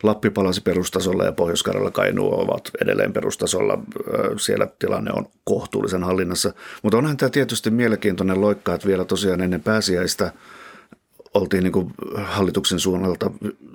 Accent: native